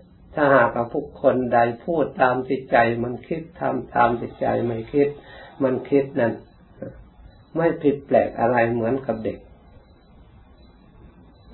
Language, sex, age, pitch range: Thai, male, 60-79, 110-140 Hz